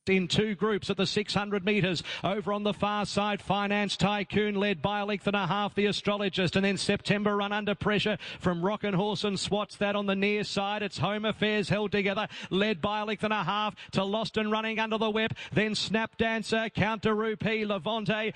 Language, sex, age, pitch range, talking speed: English, male, 40-59, 205-245 Hz, 215 wpm